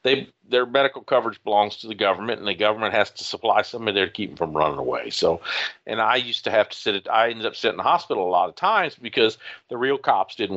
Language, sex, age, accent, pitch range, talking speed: English, male, 50-69, American, 100-130 Hz, 265 wpm